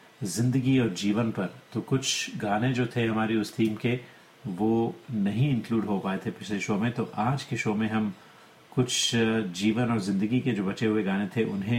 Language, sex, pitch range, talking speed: Hindi, male, 100-120 Hz, 200 wpm